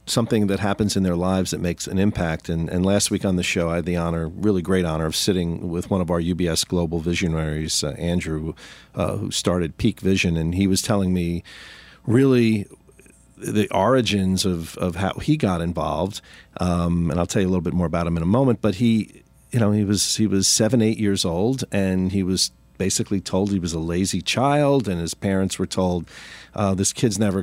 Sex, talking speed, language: male, 215 wpm, English